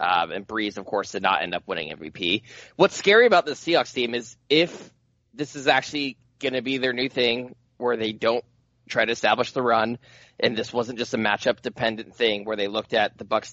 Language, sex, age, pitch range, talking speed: English, male, 20-39, 110-135 Hz, 215 wpm